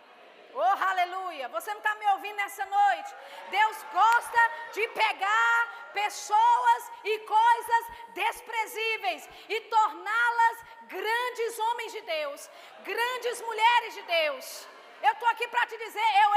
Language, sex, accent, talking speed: Portuguese, female, Brazilian, 125 wpm